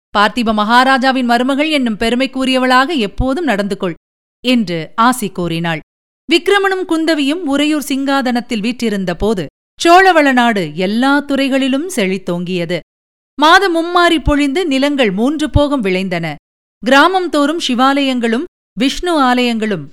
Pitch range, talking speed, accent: 210-300 Hz, 95 wpm, native